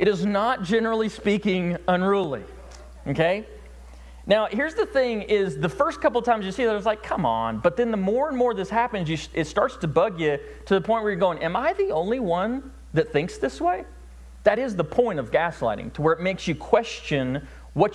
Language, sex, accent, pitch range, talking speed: English, male, American, 130-200 Hz, 220 wpm